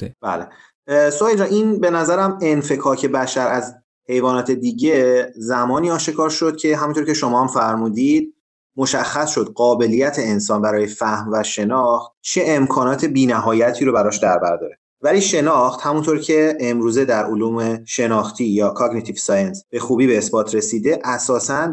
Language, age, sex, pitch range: Persian, 30-49, male, 115-155 Hz